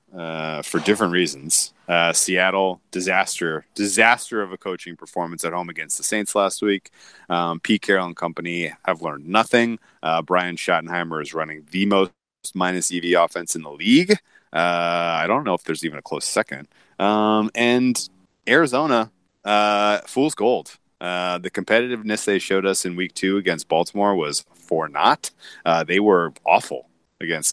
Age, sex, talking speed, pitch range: 30-49, male, 165 wpm, 85-100 Hz